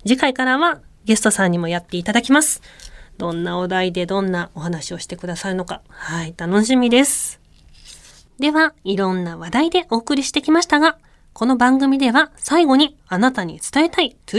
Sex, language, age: female, Japanese, 20-39